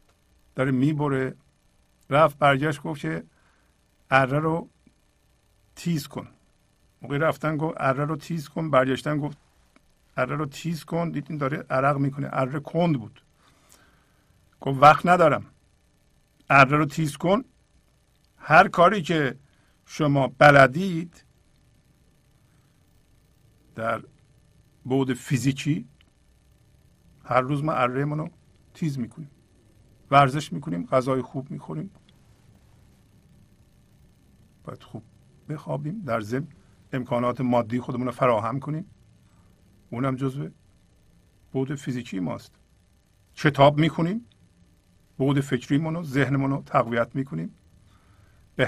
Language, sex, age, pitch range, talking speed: Persian, male, 50-69, 125-160 Hz, 95 wpm